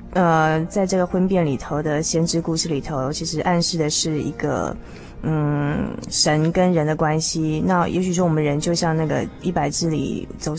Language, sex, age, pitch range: Chinese, female, 20-39, 150-175 Hz